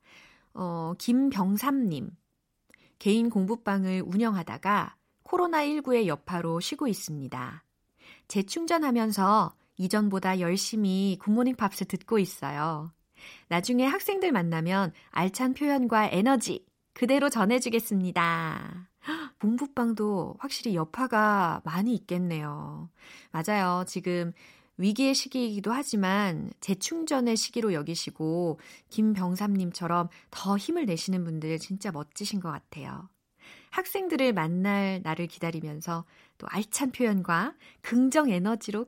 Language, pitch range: Korean, 180-260 Hz